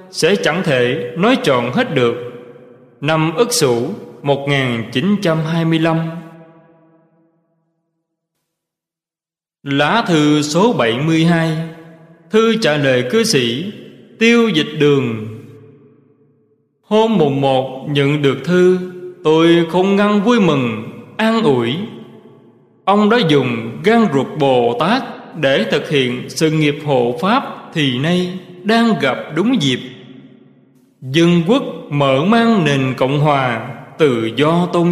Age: 20-39